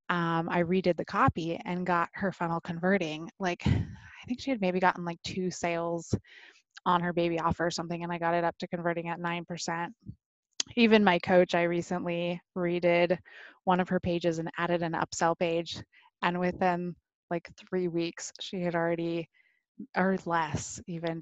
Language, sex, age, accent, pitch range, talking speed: English, female, 20-39, American, 170-190 Hz, 175 wpm